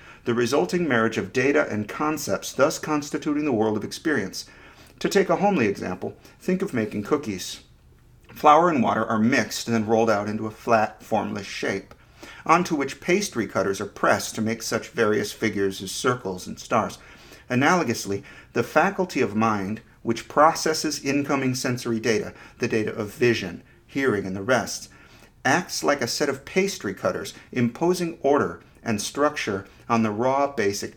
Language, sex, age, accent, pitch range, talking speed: English, male, 50-69, American, 110-150 Hz, 165 wpm